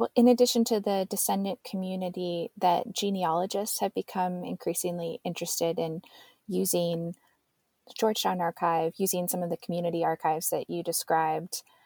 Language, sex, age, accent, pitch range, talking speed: English, female, 20-39, American, 165-210 Hz, 135 wpm